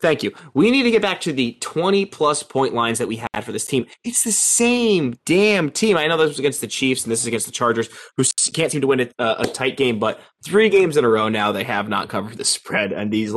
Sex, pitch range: male, 120-185 Hz